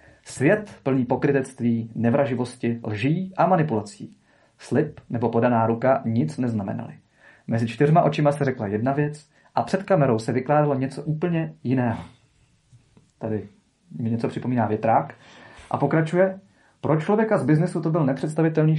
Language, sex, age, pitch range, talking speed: Czech, male, 30-49, 120-165 Hz, 135 wpm